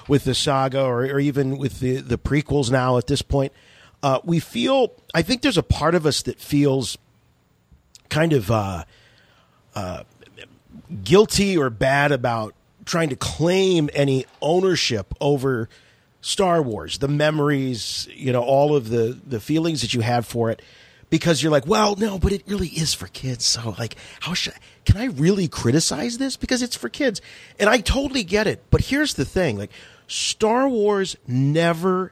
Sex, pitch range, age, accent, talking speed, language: male, 125-185 Hz, 40-59, American, 175 wpm, English